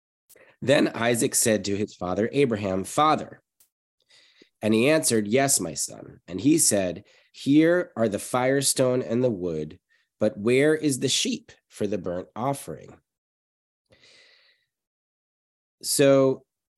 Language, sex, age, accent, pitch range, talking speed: English, male, 30-49, American, 105-140 Hz, 120 wpm